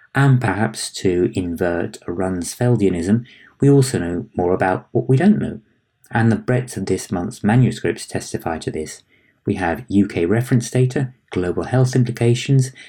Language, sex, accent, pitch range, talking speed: English, male, British, 90-115 Hz, 150 wpm